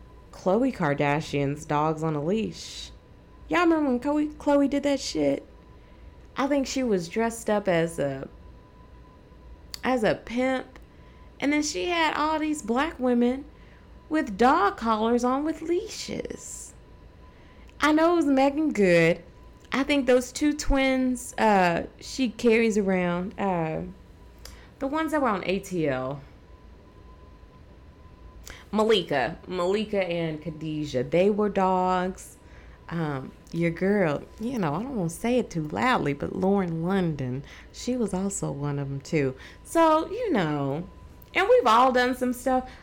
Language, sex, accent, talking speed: English, female, American, 140 wpm